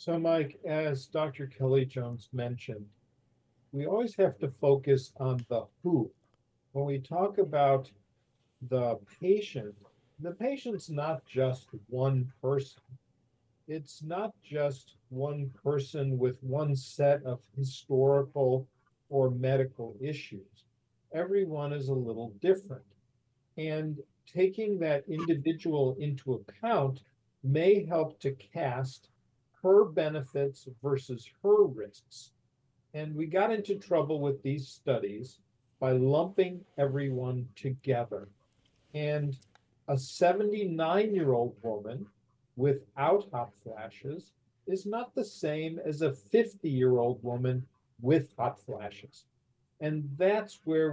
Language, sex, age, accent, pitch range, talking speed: English, male, 50-69, American, 125-155 Hz, 110 wpm